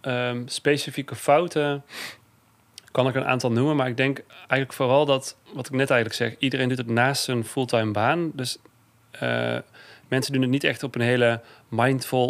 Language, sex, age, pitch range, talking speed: Dutch, male, 30-49, 110-130 Hz, 175 wpm